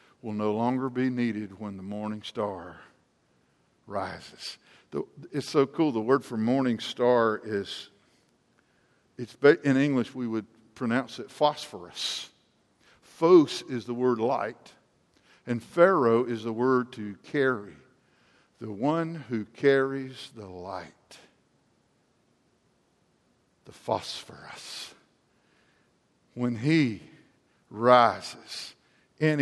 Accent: American